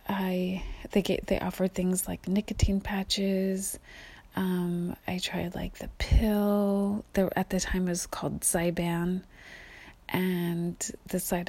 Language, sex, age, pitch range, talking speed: English, female, 30-49, 170-195 Hz, 135 wpm